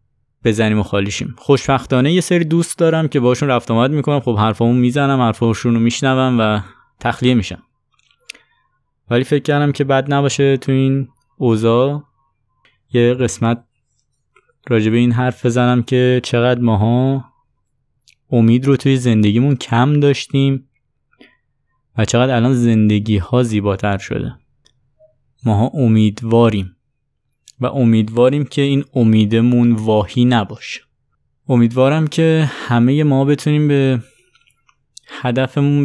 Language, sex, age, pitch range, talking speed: Persian, male, 20-39, 115-135 Hz, 115 wpm